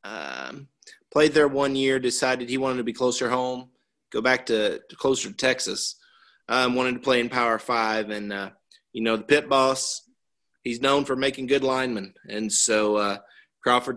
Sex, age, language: male, 30-49, English